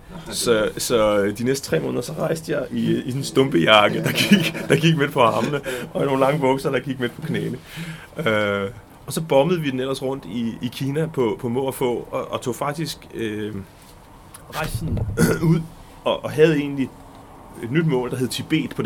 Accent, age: native, 30-49